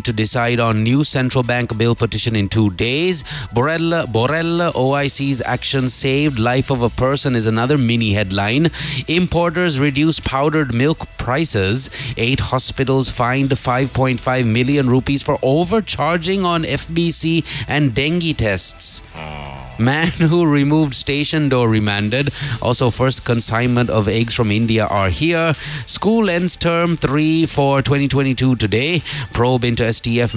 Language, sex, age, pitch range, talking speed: English, male, 30-49, 115-150 Hz, 130 wpm